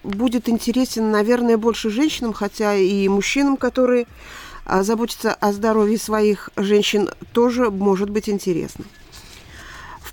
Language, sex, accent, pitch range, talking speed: Russian, female, native, 190-245 Hz, 115 wpm